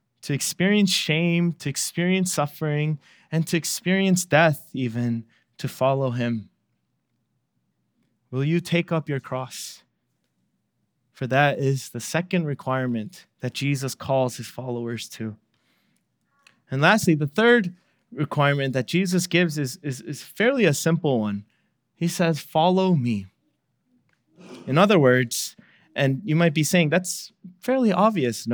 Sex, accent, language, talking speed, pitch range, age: male, American, English, 130 wpm, 130-175 Hz, 20-39